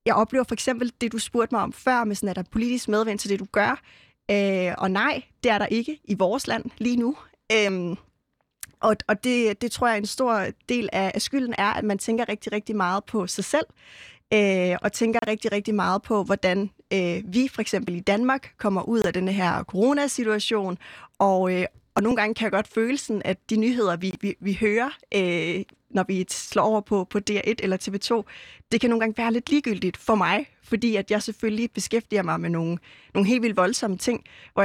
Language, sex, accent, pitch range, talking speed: Danish, female, native, 195-235 Hz, 205 wpm